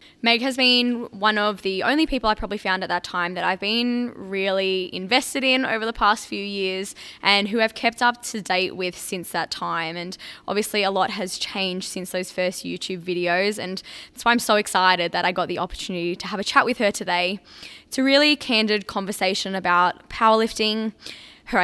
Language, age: English, 10-29